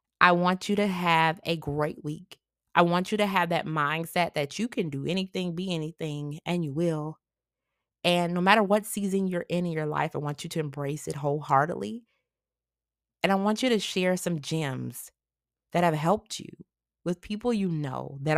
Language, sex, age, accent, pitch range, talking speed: English, female, 30-49, American, 155-195 Hz, 195 wpm